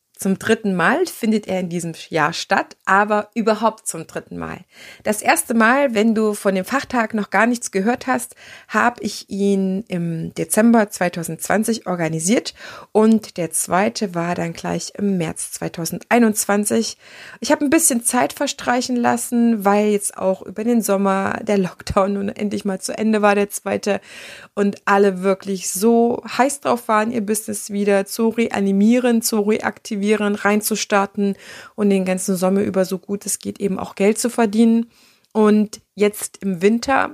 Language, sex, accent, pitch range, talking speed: German, female, German, 195-225 Hz, 160 wpm